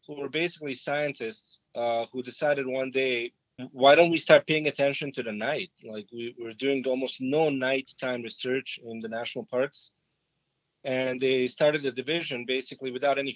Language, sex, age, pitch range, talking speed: English, male, 30-49, 120-150 Hz, 170 wpm